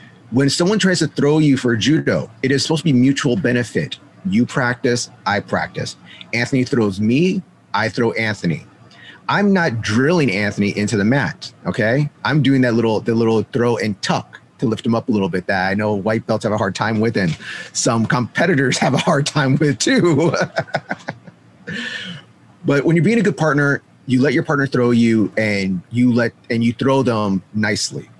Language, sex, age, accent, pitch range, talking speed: English, male, 30-49, American, 105-130 Hz, 190 wpm